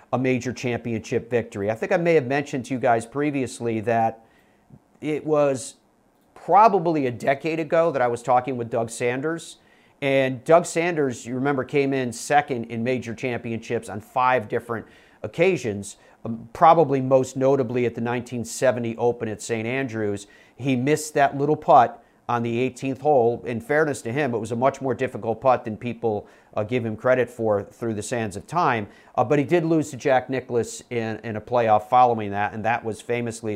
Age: 40-59